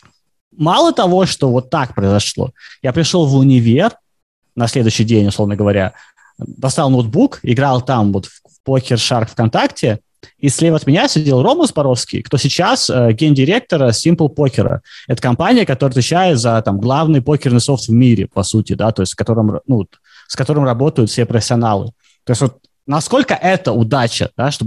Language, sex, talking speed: Russian, male, 165 wpm